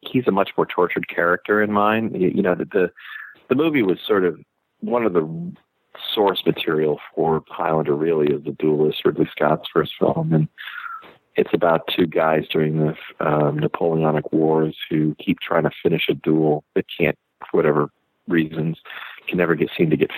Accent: American